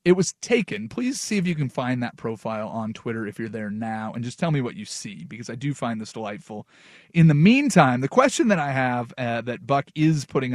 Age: 30-49